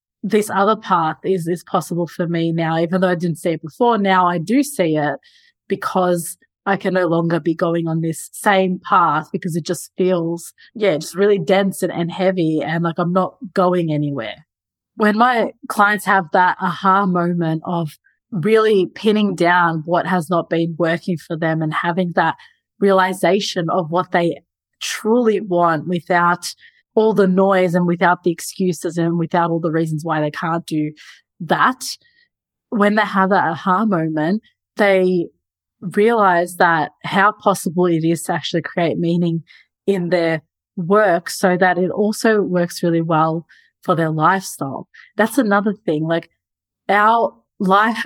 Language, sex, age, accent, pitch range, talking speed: English, female, 20-39, Australian, 170-200 Hz, 160 wpm